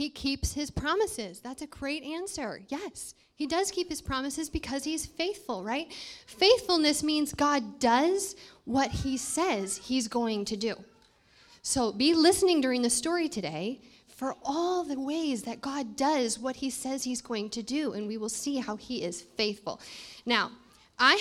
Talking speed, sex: 170 wpm, female